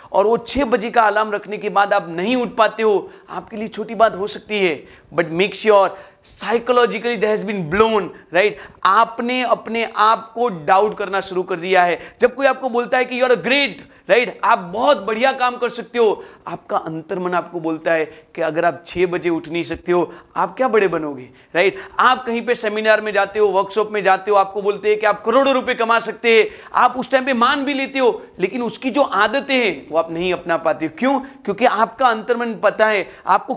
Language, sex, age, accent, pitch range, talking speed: Hindi, male, 40-59, native, 185-240 Hz, 220 wpm